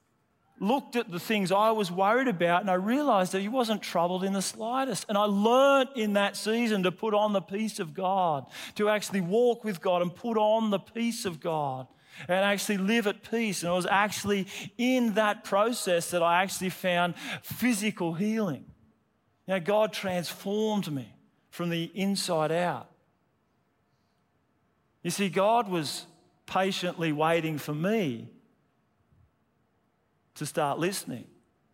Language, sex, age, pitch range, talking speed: English, male, 40-59, 185-225 Hz, 155 wpm